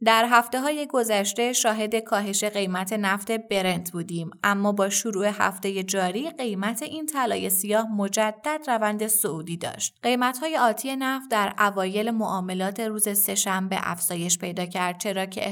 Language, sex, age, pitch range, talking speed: Persian, female, 20-39, 190-225 Hz, 145 wpm